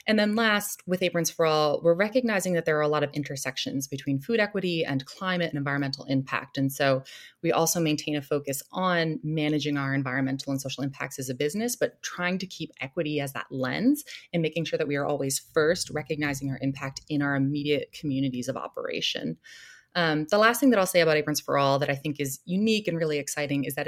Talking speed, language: 220 wpm, English